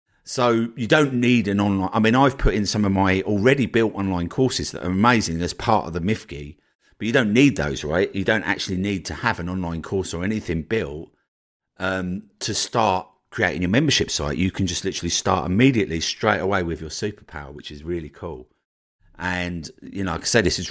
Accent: British